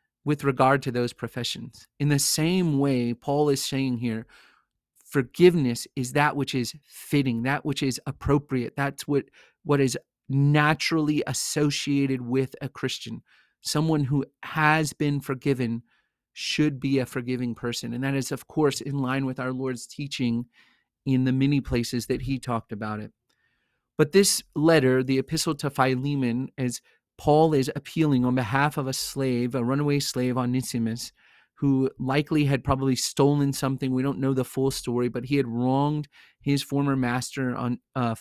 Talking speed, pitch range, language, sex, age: 160 wpm, 125-145 Hz, English, male, 30-49